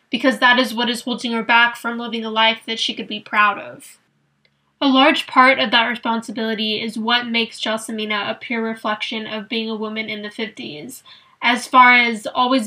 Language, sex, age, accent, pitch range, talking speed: English, female, 10-29, American, 225-255 Hz, 200 wpm